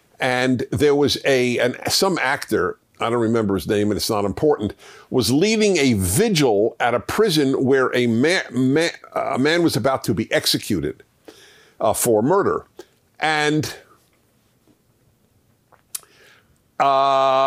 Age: 50-69